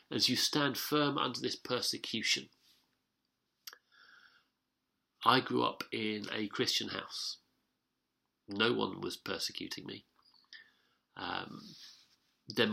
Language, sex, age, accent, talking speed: English, male, 40-59, British, 100 wpm